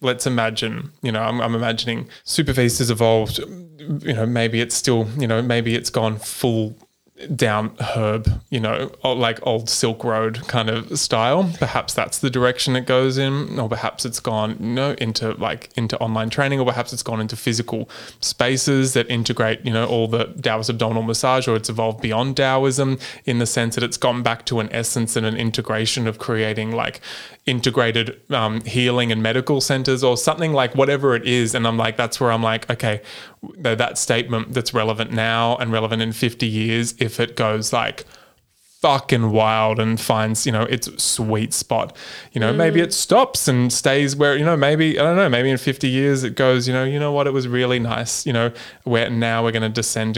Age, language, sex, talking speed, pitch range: 20-39, English, male, 200 wpm, 115-130 Hz